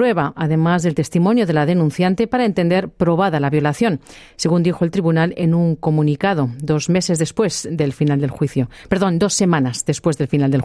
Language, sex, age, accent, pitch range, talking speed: Spanish, female, 40-59, Spanish, 160-210 Hz, 180 wpm